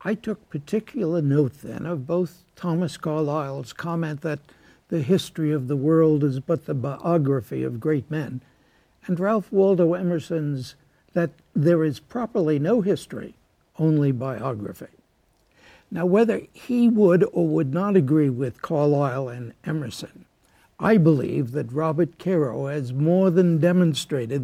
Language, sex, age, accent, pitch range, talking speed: English, male, 60-79, American, 145-180 Hz, 135 wpm